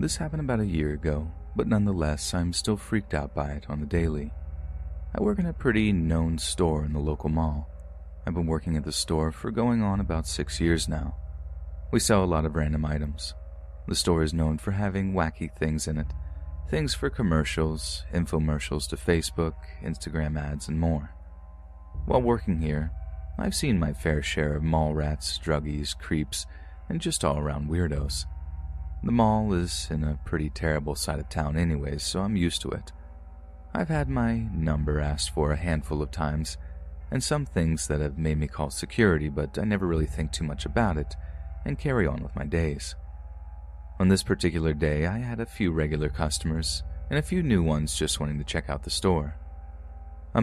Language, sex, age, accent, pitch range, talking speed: English, male, 30-49, American, 75-85 Hz, 190 wpm